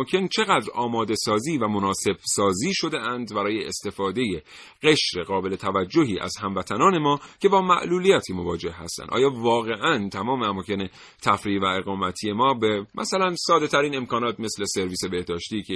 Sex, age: male, 40-59